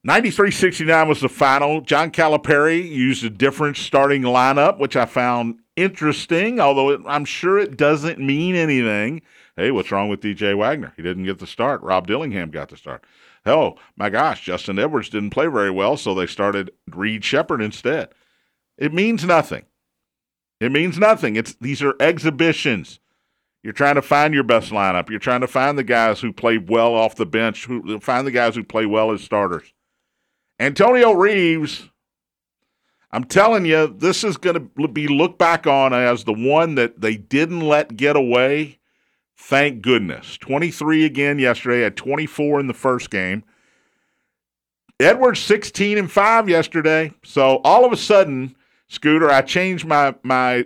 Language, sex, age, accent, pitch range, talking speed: English, male, 50-69, American, 115-160 Hz, 165 wpm